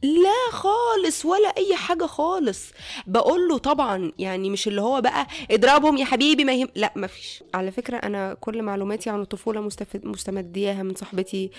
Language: Arabic